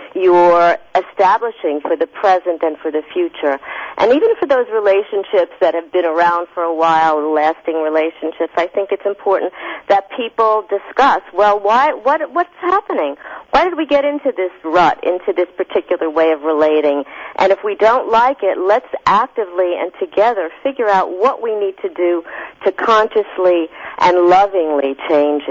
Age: 50-69